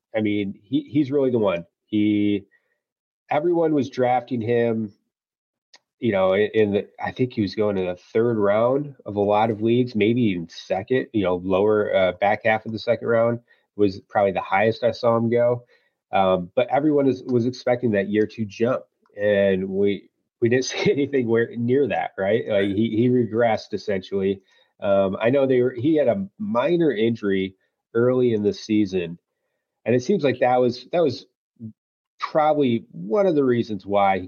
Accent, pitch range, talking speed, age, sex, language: American, 105-135 Hz, 180 wpm, 30-49, male, English